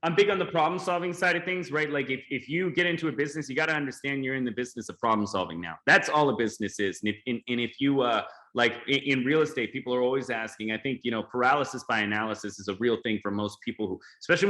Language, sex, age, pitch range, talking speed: English, male, 20-39, 115-150 Hz, 275 wpm